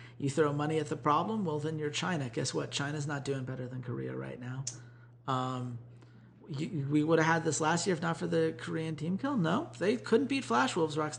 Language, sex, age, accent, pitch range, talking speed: English, male, 30-49, American, 125-150 Hz, 230 wpm